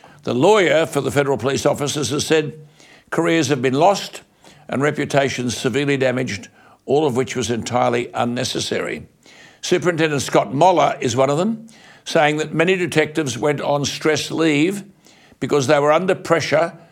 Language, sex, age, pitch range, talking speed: English, male, 60-79, 130-165 Hz, 155 wpm